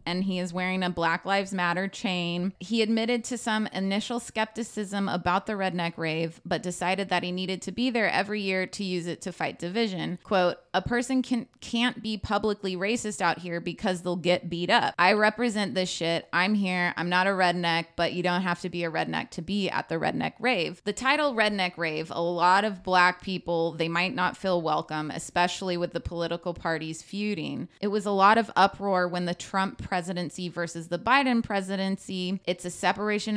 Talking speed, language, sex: 200 wpm, English, female